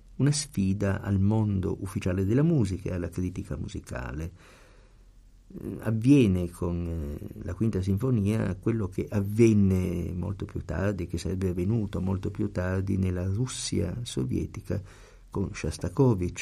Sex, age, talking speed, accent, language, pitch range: male, 50-69, 125 wpm, native, Italian, 90-105 Hz